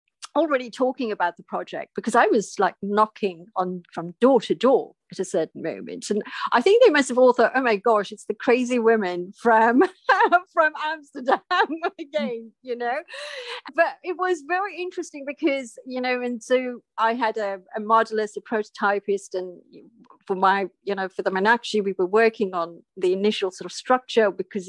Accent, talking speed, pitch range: British, 180 wpm, 195-250 Hz